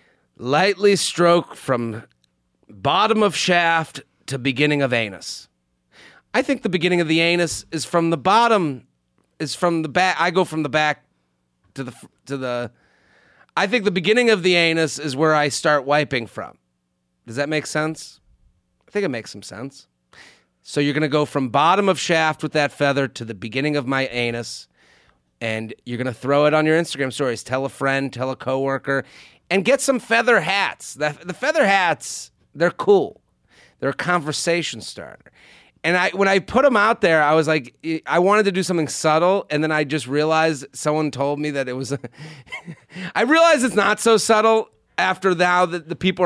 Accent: American